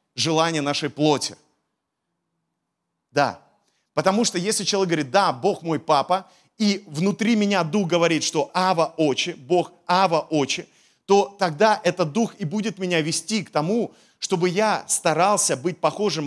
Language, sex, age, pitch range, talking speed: Russian, male, 30-49, 155-195 Hz, 145 wpm